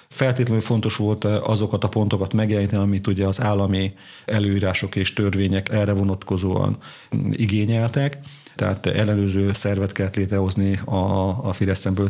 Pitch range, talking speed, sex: 100-110 Hz, 120 wpm, male